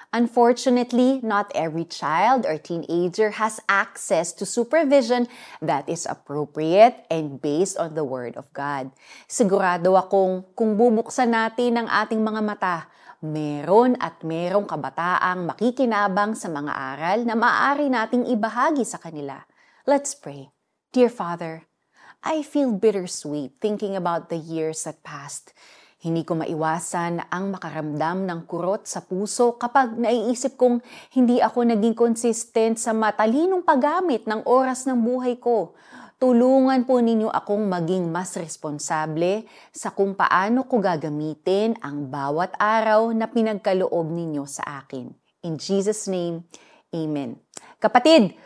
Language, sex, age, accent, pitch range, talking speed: Filipino, female, 30-49, native, 170-240 Hz, 130 wpm